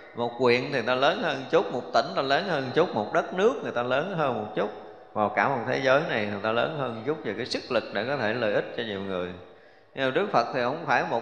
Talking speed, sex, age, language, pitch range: 285 wpm, male, 20-39, Vietnamese, 120-160 Hz